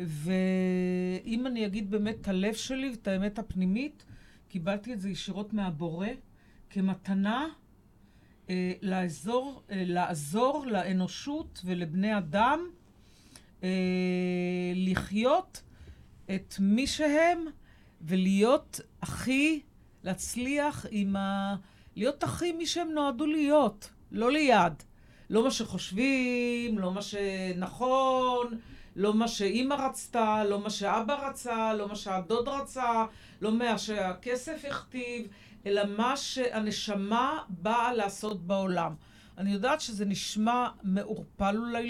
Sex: female